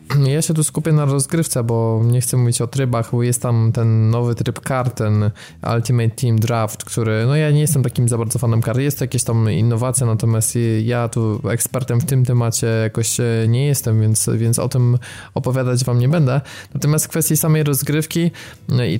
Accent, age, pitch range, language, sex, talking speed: native, 20-39, 115-130 Hz, Polish, male, 195 wpm